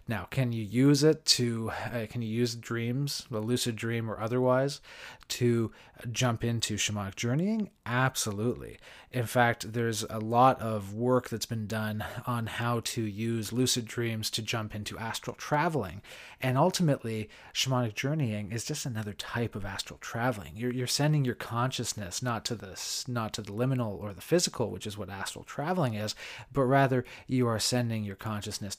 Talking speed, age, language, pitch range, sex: 170 wpm, 30-49, English, 105-125 Hz, male